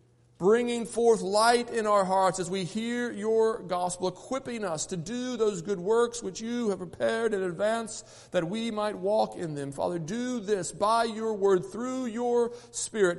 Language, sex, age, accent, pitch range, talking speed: English, male, 40-59, American, 180-225 Hz, 175 wpm